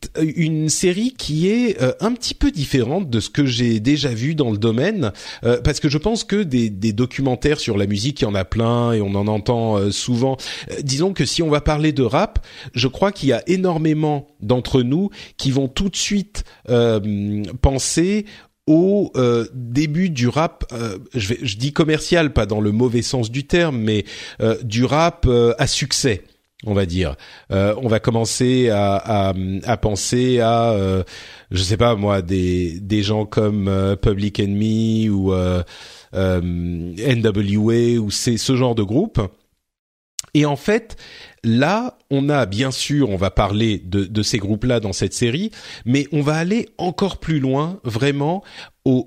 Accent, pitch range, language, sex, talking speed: French, 110-155 Hz, French, male, 185 wpm